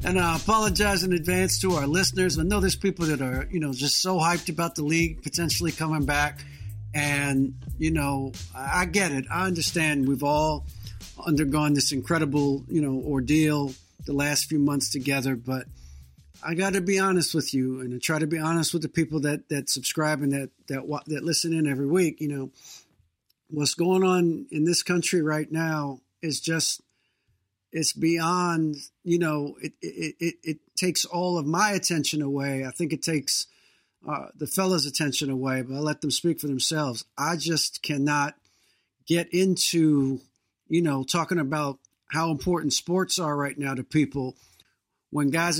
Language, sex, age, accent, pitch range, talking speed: English, male, 50-69, American, 140-170 Hz, 175 wpm